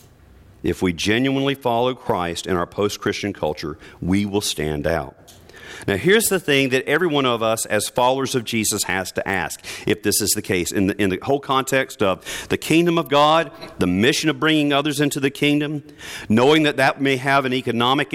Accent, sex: American, male